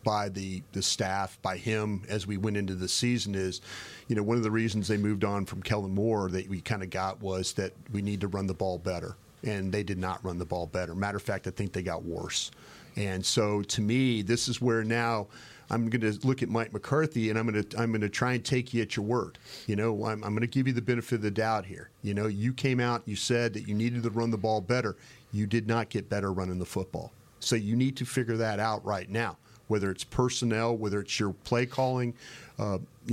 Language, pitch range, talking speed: English, 100-120 Hz, 245 wpm